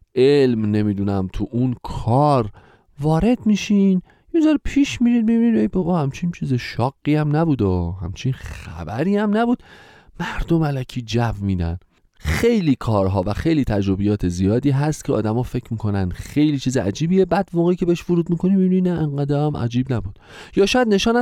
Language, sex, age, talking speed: Persian, male, 40-59, 155 wpm